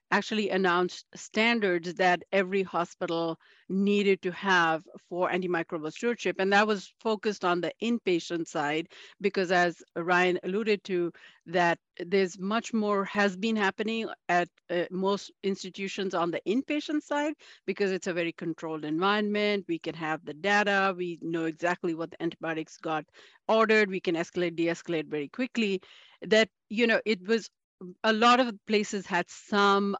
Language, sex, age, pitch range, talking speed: English, female, 50-69, 175-210 Hz, 150 wpm